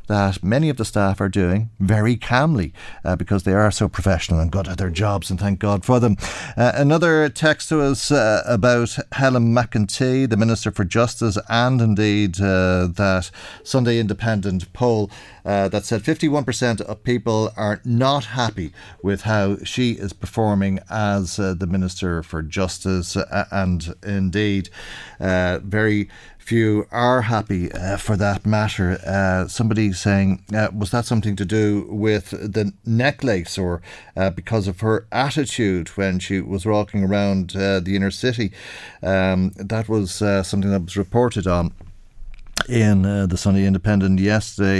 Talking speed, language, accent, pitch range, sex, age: 160 wpm, English, Irish, 95-110 Hz, male, 40-59